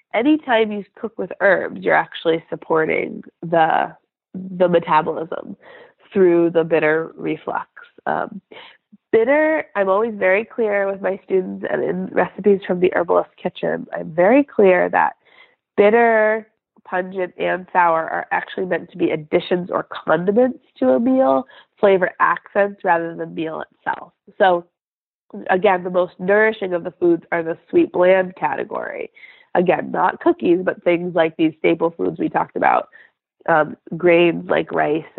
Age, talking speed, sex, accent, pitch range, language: 20-39, 145 wpm, female, American, 165-220 Hz, English